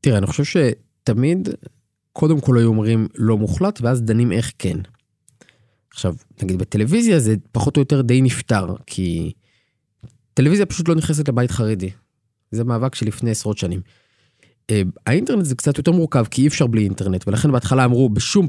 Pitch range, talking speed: 110-135 Hz, 160 wpm